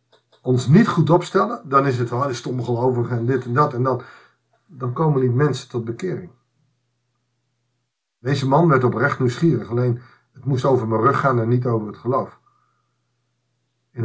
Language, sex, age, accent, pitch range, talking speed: Dutch, male, 50-69, Dutch, 120-155 Hz, 165 wpm